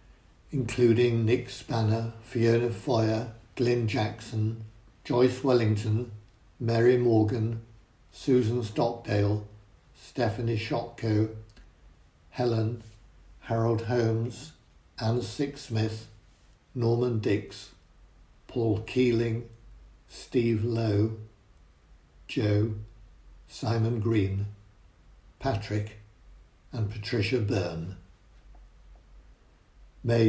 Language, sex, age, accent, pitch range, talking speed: English, male, 60-79, British, 100-120 Hz, 70 wpm